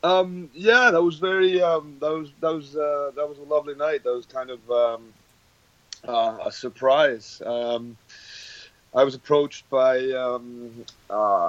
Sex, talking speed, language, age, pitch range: male, 160 wpm, English, 30-49, 130-155 Hz